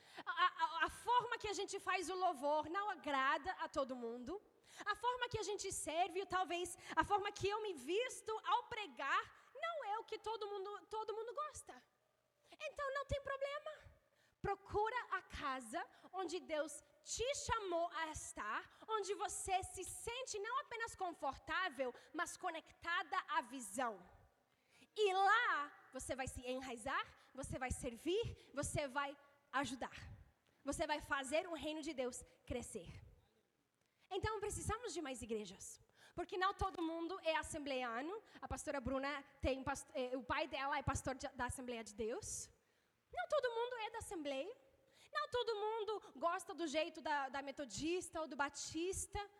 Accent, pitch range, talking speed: Brazilian, 295-435 Hz, 155 wpm